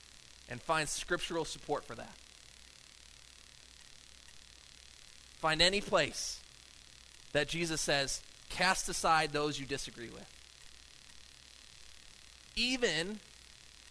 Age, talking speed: 30-49, 80 wpm